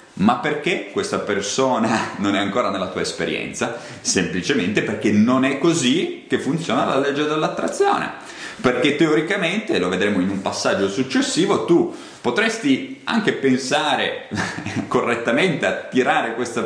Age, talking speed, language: 30-49, 130 wpm, Italian